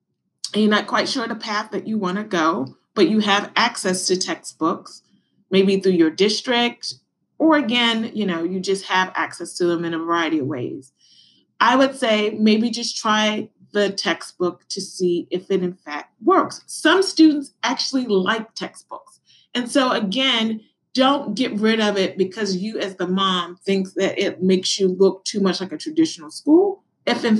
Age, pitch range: 30-49, 190-235 Hz